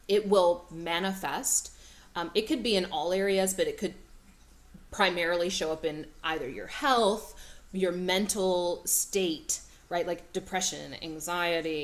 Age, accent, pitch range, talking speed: 20-39, American, 145-190 Hz, 135 wpm